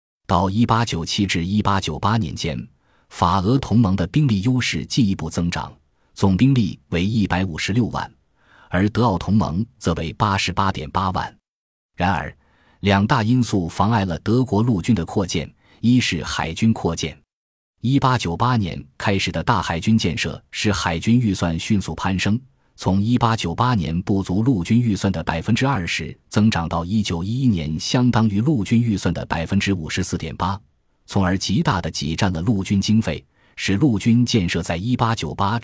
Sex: male